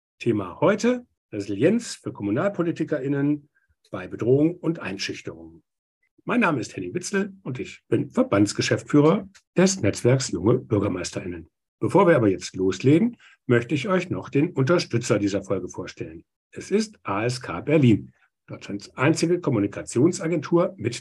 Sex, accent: male, German